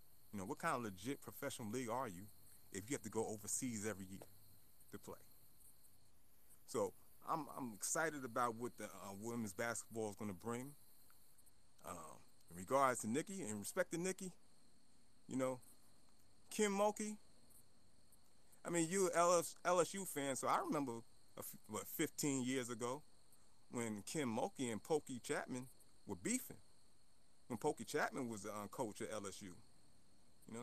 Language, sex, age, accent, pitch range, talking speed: English, male, 30-49, American, 105-140 Hz, 155 wpm